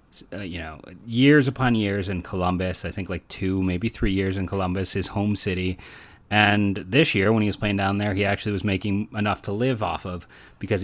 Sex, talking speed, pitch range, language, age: male, 215 wpm, 95-115 Hz, English, 30-49